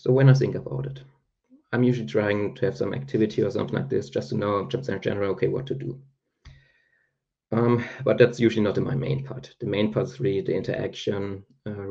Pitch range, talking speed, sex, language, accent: 105-135 Hz, 215 wpm, male, English, German